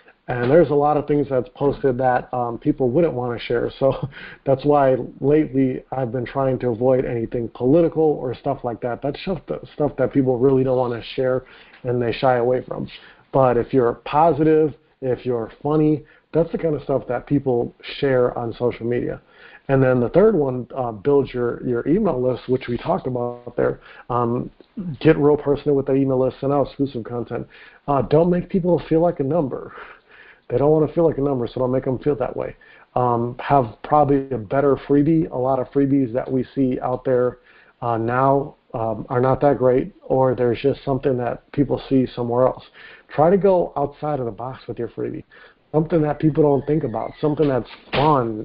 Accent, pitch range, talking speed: American, 125-145 Hz, 200 wpm